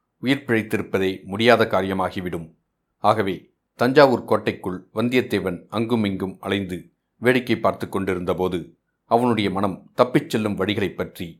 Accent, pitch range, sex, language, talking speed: native, 95-120 Hz, male, Tamil, 95 wpm